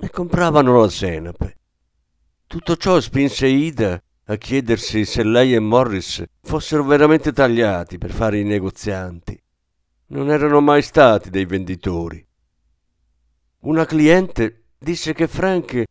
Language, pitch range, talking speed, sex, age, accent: Italian, 90-145 Hz, 120 wpm, male, 50-69, native